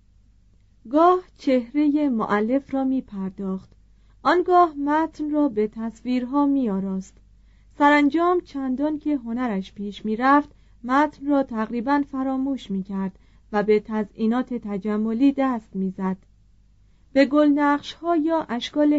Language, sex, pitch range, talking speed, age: Persian, female, 195-275 Hz, 110 wpm, 30-49